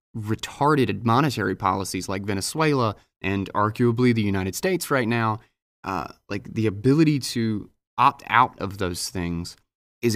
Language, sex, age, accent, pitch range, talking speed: English, male, 20-39, American, 95-110 Hz, 135 wpm